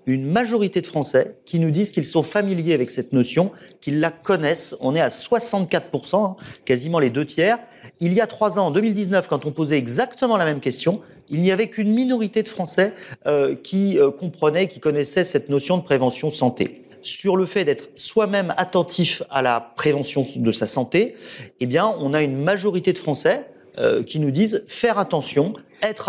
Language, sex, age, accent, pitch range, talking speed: French, male, 40-59, French, 140-200 Hz, 190 wpm